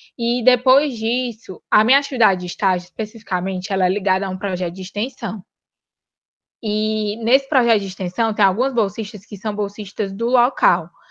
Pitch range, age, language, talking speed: 200-245 Hz, 20-39, Portuguese, 160 wpm